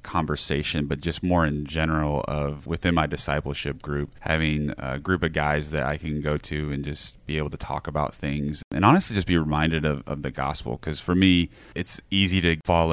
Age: 30-49